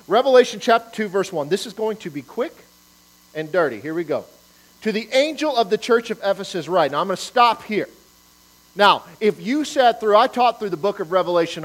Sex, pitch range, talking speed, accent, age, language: male, 140-210 Hz, 220 wpm, American, 40-59, English